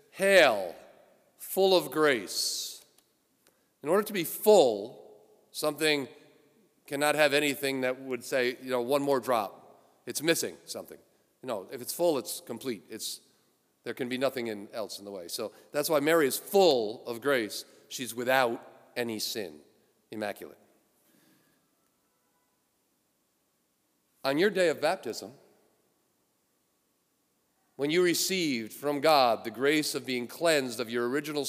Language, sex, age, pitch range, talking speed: English, male, 40-59, 130-165 Hz, 135 wpm